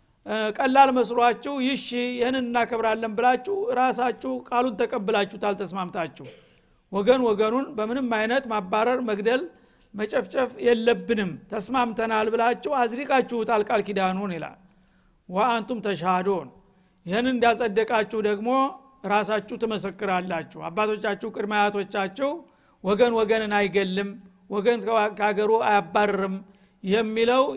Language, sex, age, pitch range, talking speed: Amharic, male, 50-69, 195-245 Hz, 90 wpm